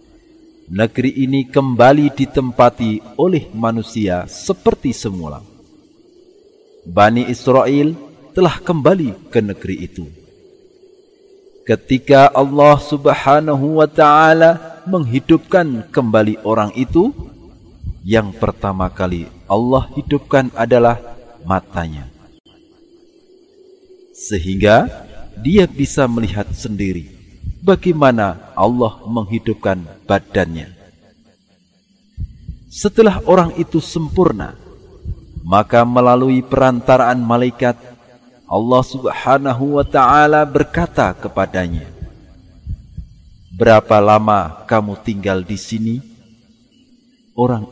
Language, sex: Indonesian, male